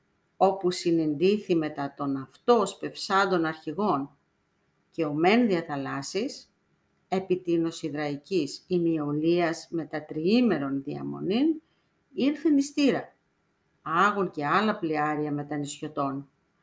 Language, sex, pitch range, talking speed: Greek, female, 155-215 Hz, 85 wpm